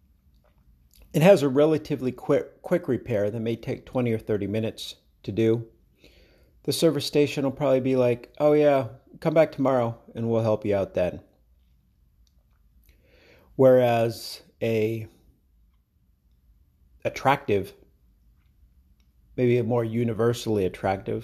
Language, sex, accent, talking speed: English, male, American, 120 wpm